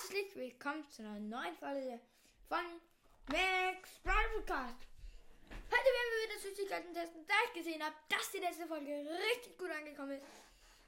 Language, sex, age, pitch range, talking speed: German, female, 10-29, 285-375 Hz, 155 wpm